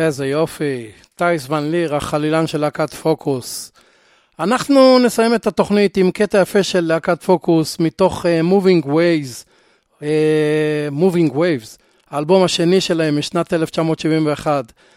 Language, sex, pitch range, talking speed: Hebrew, male, 155-185 Hz, 125 wpm